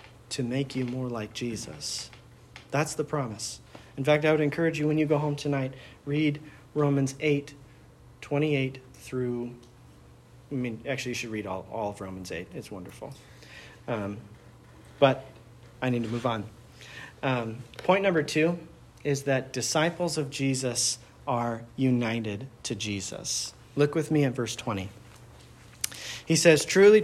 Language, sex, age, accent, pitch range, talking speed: English, male, 40-59, American, 120-150 Hz, 150 wpm